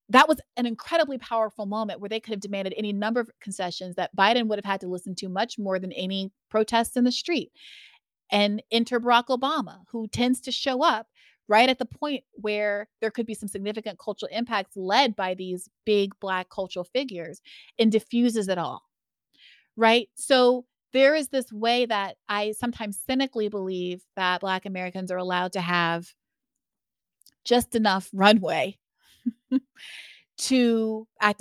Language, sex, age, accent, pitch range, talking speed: English, female, 30-49, American, 180-225 Hz, 165 wpm